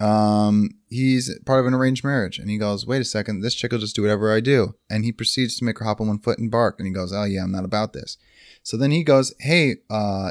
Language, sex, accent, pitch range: English, male, American, 95-120 Hz